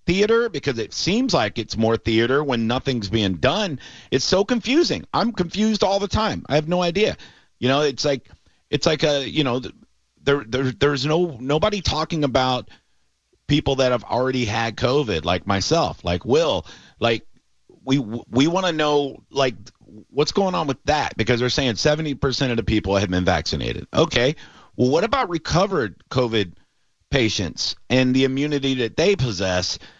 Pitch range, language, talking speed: 110-150 Hz, English, 170 wpm